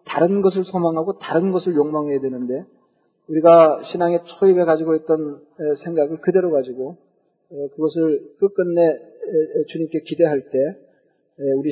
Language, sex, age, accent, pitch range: Korean, male, 40-59, native, 155-190 Hz